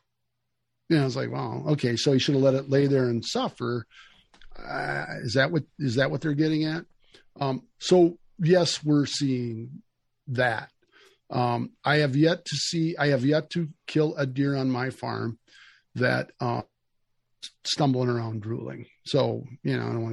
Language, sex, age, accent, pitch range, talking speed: English, male, 50-69, American, 130-160 Hz, 180 wpm